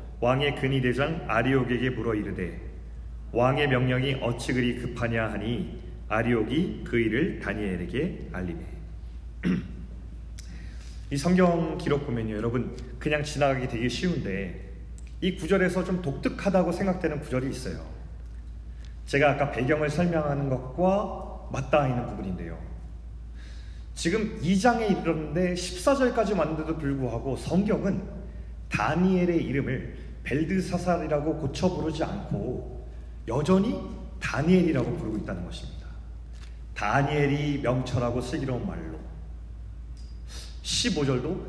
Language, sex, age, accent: Korean, male, 30-49, native